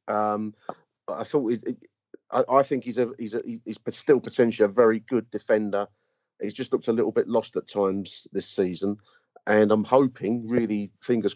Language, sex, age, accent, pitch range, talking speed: English, male, 40-59, British, 95-115 Hz, 185 wpm